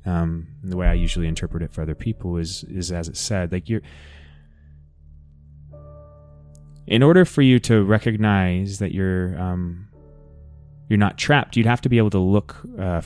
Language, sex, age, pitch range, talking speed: English, male, 20-39, 75-105 Hz, 170 wpm